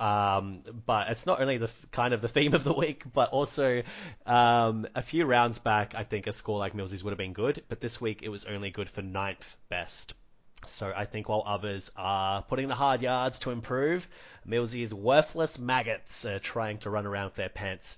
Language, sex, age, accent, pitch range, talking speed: English, male, 30-49, Australian, 100-120 Hz, 215 wpm